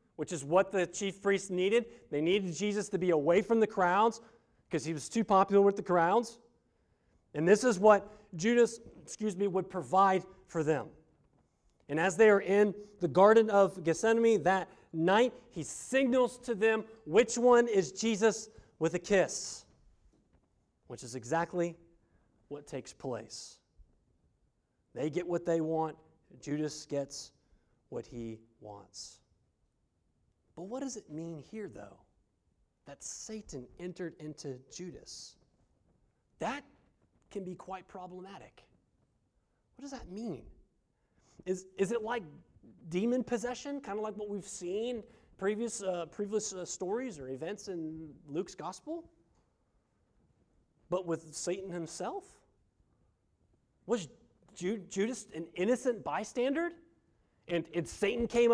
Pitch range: 160-225 Hz